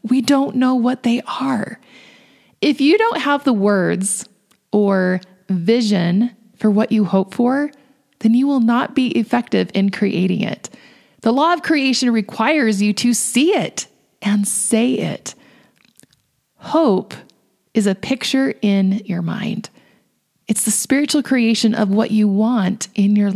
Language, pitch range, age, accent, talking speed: English, 200-270 Hz, 30-49, American, 145 wpm